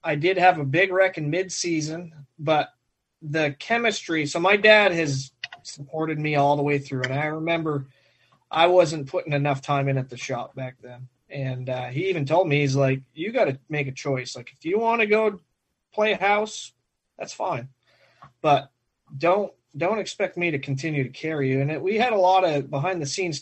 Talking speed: 205 wpm